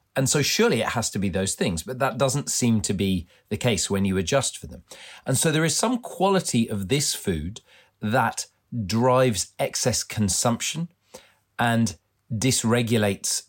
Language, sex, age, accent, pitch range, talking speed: English, male, 40-59, British, 95-125 Hz, 165 wpm